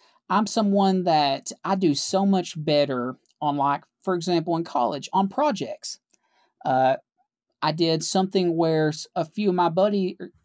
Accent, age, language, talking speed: American, 40-59, English, 155 wpm